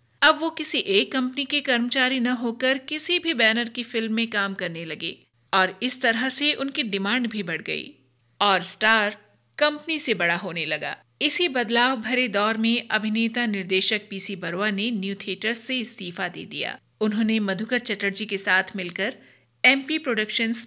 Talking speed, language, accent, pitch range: 175 wpm, Hindi, native, 190-245 Hz